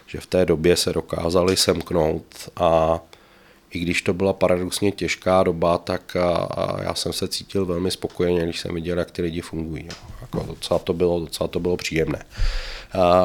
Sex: male